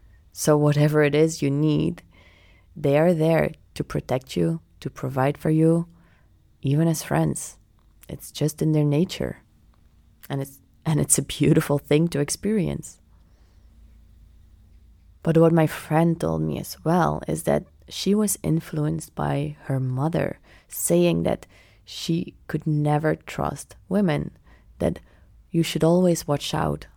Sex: female